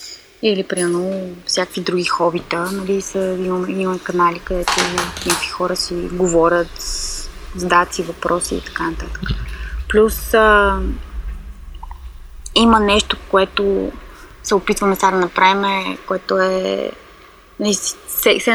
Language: Bulgarian